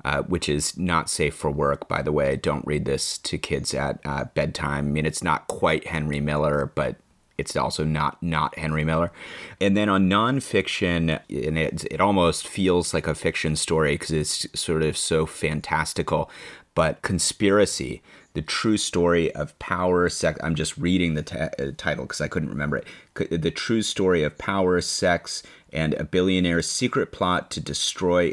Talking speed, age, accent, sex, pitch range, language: 180 wpm, 30-49, American, male, 75-85 Hz, English